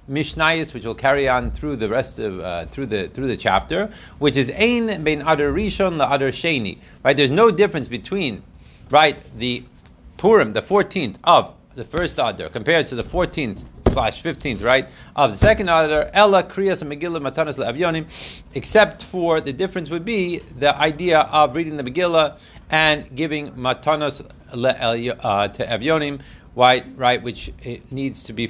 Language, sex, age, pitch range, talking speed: Hebrew, male, 40-59, 115-160 Hz, 150 wpm